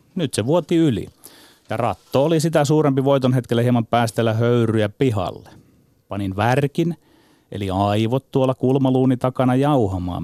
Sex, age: male, 30-49